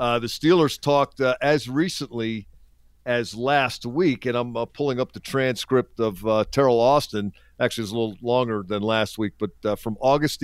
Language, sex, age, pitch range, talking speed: English, male, 50-69, 110-130 Hz, 190 wpm